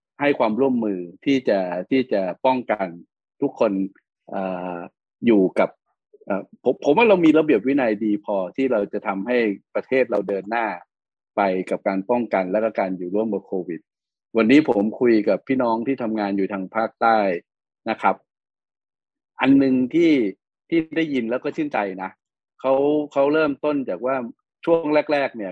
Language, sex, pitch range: Thai, male, 100-135 Hz